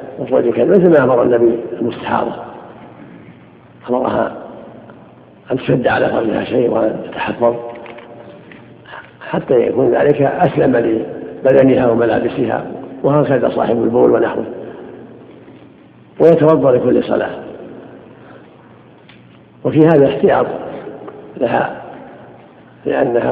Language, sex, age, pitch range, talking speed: Arabic, male, 60-79, 125-145 Hz, 80 wpm